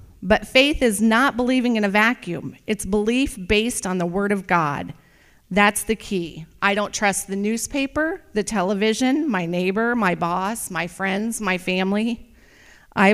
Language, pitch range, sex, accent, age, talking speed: English, 190-235 Hz, female, American, 40-59, 160 wpm